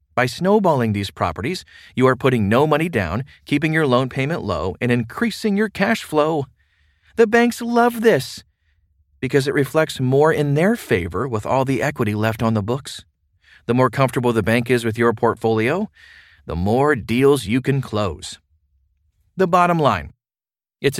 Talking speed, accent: 165 wpm, American